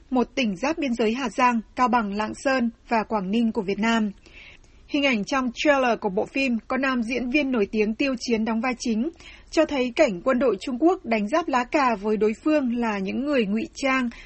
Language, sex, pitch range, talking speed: Vietnamese, female, 220-275 Hz, 225 wpm